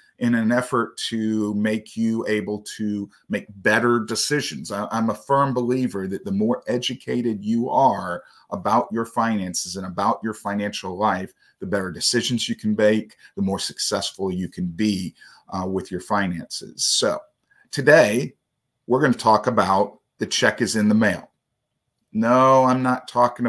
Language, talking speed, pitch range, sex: English, 155 wpm, 100-125 Hz, male